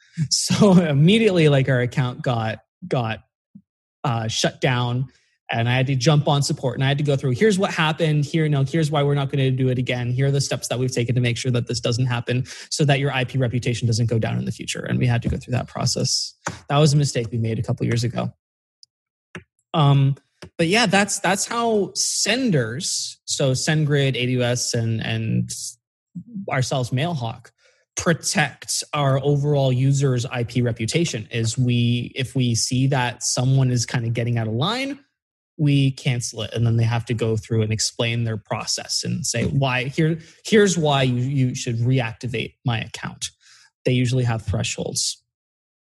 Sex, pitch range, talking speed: male, 120-145 Hz, 190 wpm